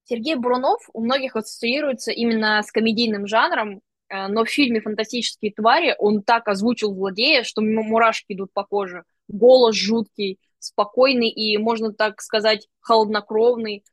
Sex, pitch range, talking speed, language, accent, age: female, 210-240 Hz, 140 wpm, Russian, native, 20-39